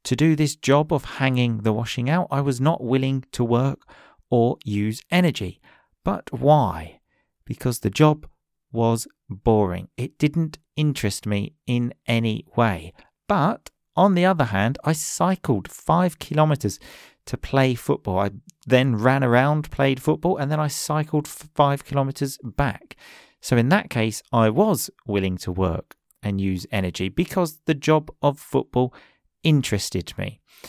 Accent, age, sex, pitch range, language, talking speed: British, 40-59, male, 110-150 Hz, English, 150 wpm